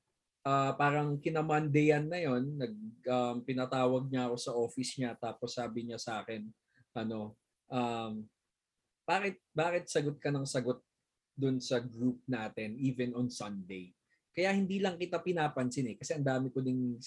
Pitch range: 120-175 Hz